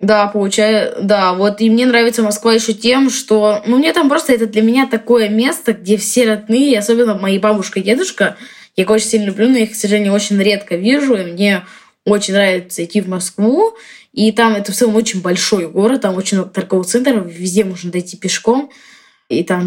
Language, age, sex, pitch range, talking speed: Russian, 20-39, female, 185-230 Hz, 200 wpm